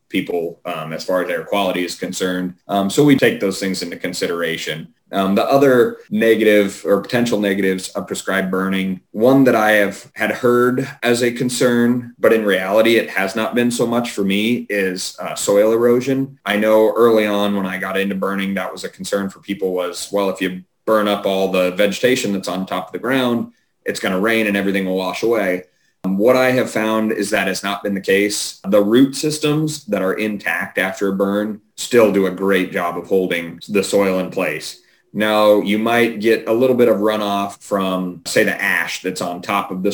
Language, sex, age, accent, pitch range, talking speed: English, male, 30-49, American, 95-115 Hz, 210 wpm